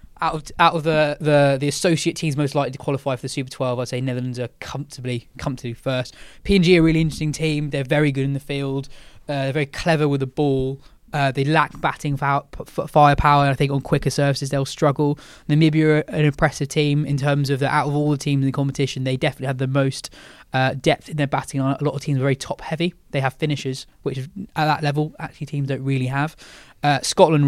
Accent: British